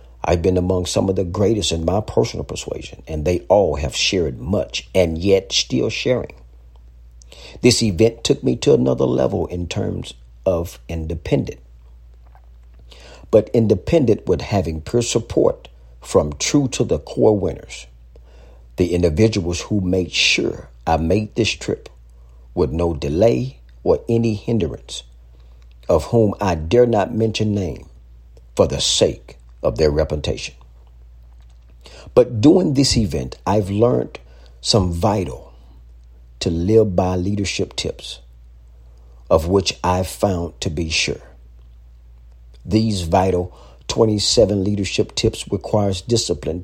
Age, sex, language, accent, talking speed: 50-69, male, English, American, 130 wpm